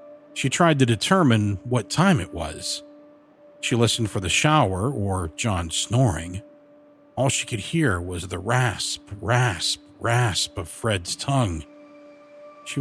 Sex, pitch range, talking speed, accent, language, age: male, 110-170 Hz, 135 wpm, American, English, 50-69